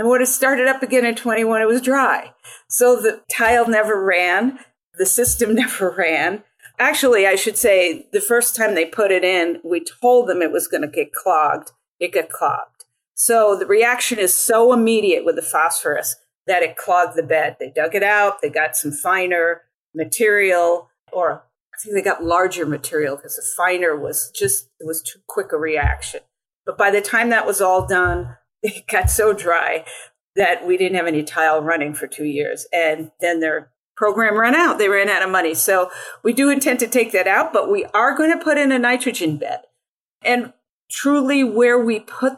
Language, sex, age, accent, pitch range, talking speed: English, female, 40-59, American, 175-255 Hz, 200 wpm